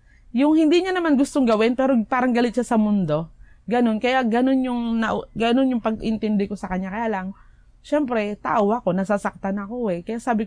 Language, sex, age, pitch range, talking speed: Filipino, female, 20-39, 195-235 Hz, 185 wpm